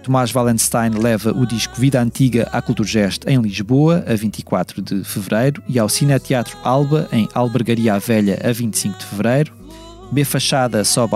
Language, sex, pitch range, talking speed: Portuguese, male, 110-135 Hz, 160 wpm